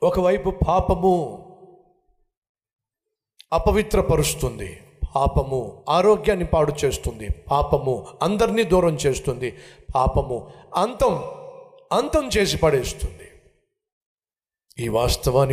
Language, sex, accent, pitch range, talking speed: Telugu, male, native, 130-205 Hz, 60 wpm